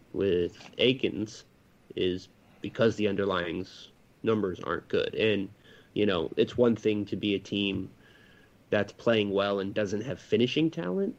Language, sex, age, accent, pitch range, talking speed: English, male, 20-39, American, 100-120 Hz, 145 wpm